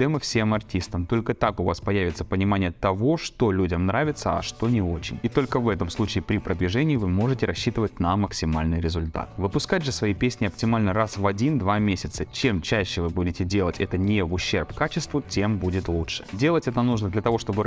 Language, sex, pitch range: Russian, male, 90-120 Hz